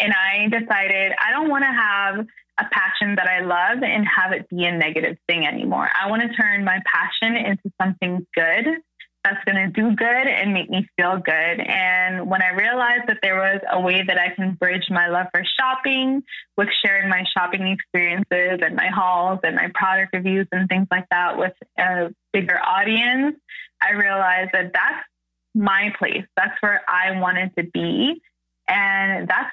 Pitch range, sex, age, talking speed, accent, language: 185-220 Hz, female, 20-39, 185 wpm, American, English